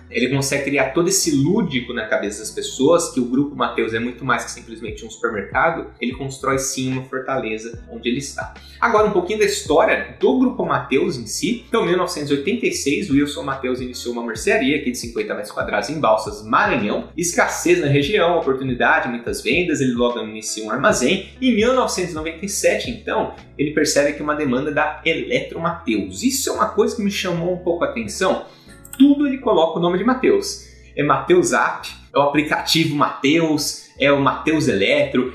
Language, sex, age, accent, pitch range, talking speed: English, male, 30-49, Brazilian, 130-205 Hz, 180 wpm